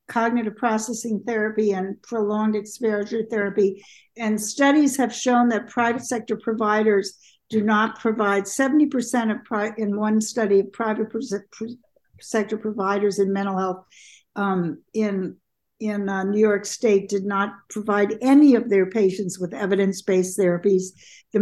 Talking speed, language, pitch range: 135 wpm, English, 195-225 Hz